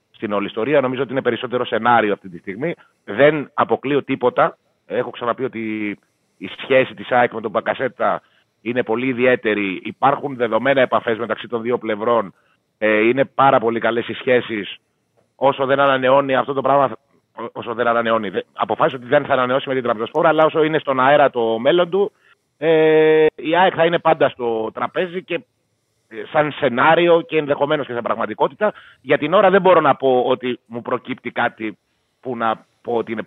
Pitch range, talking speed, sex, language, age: 115-145 Hz, 170 wpm, male, Greek, 30-49